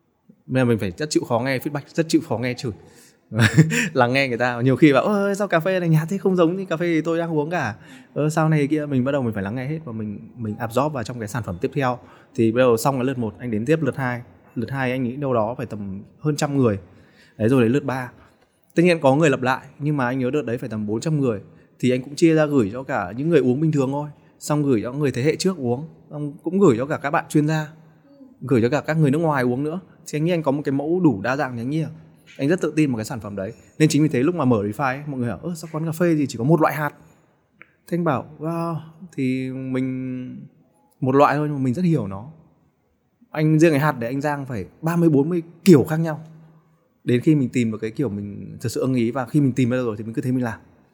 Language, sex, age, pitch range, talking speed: Vietnamese, male, 20-39, 120-160 Hz, 280 wpm